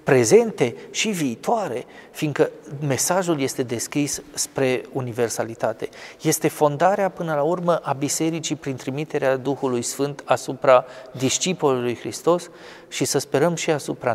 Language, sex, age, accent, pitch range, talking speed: Romanian, male, 30-49, native, 130-165 Hz, 120 wpm